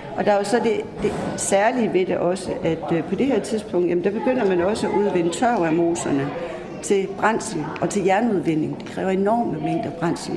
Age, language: 60-79, Danish